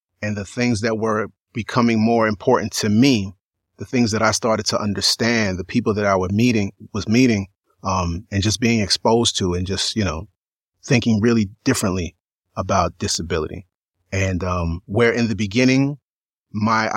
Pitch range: 105-145 Hz